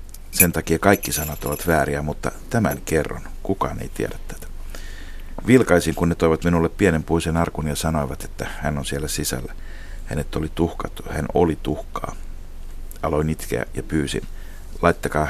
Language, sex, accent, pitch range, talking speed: Finnish, male, native, 70-85 Hz, 155 wpm